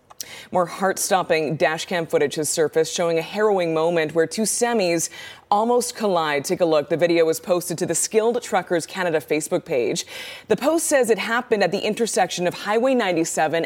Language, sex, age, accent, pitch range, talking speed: English, female, 20-39, American, 165-205 Hz, 180 wpm